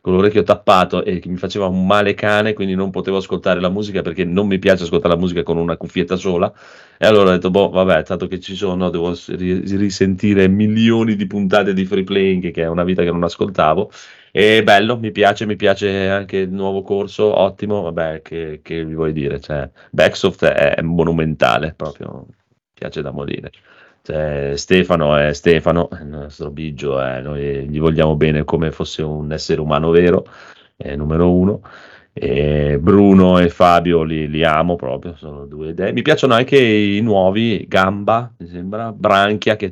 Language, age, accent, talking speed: Italian, 30-49, native, 180 wpm